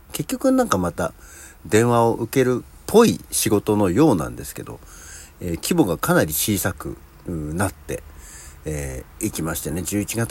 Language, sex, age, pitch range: Japanese, male, 60-79, 75-110 Hz